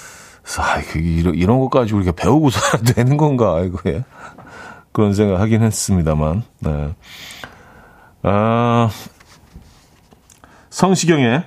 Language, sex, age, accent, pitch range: Korean, male, 40-59, native, 95-145 Hz